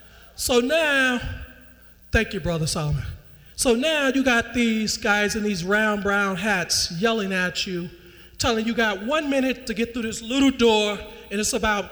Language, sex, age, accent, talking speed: English, male, 40-59, American, 170 wpm